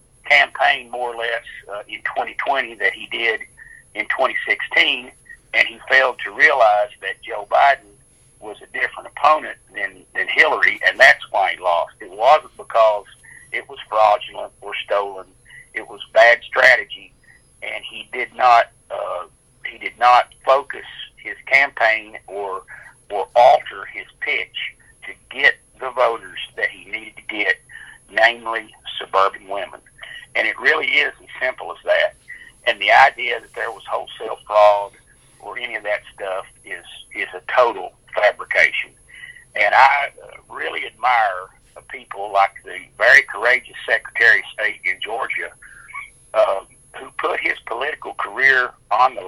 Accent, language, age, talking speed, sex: American, English, 50-69, 145 wpm, male